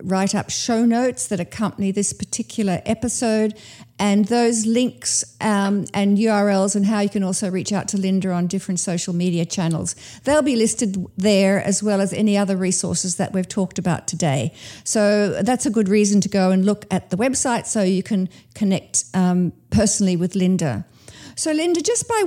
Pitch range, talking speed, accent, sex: 190-235 Hz, 180 wpm, Australian, female